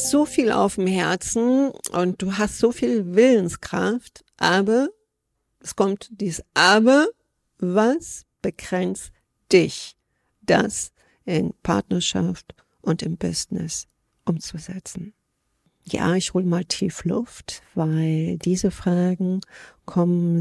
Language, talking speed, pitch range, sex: German, 105 wpm, 170-205 Hz, female